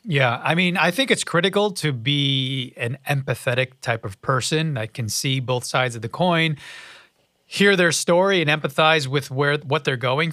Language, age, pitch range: English, 30-49, 130-165 Hz